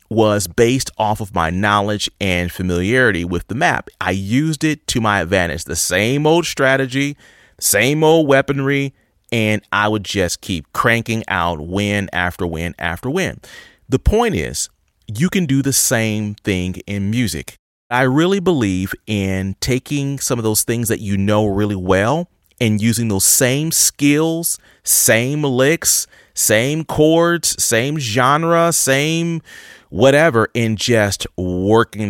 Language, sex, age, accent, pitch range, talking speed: English, male, 30-49, American, 100-155 Hz, 145 wpm